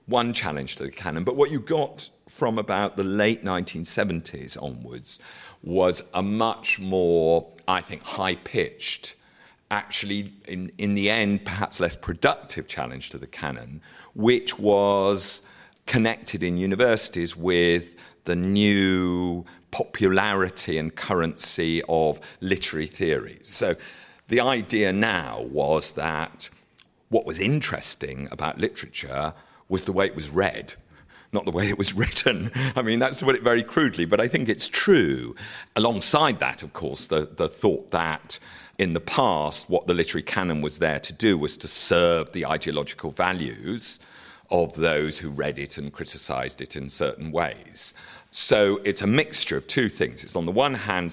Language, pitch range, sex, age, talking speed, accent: English, 80-100 Hz, male, 50-69, 155 wpm, British